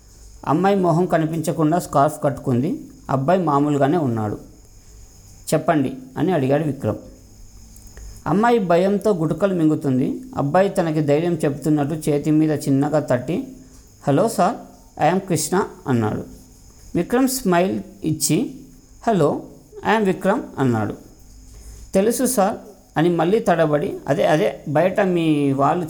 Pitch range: 130-190 Hz